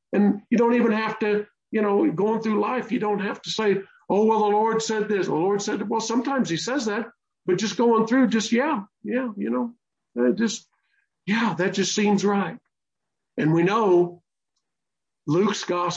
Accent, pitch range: American, 170-220 Hz